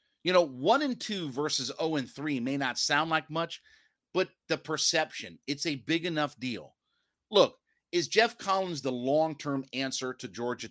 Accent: American